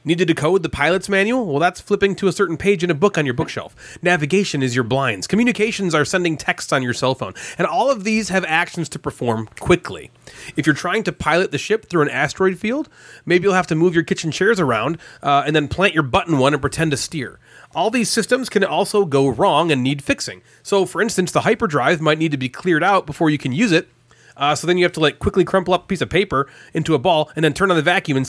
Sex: male